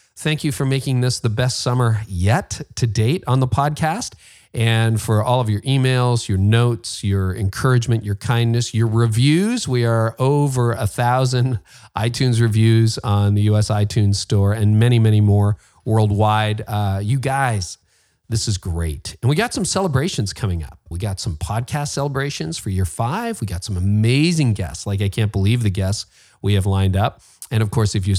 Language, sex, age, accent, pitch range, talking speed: English, male, 40-59, American, 105-130 Hz, 185 wpm